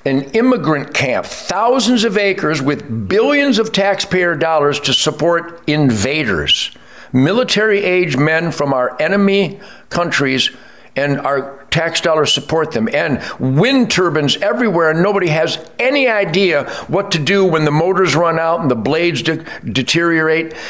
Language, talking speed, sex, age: English, 135 wpm, male, 60-79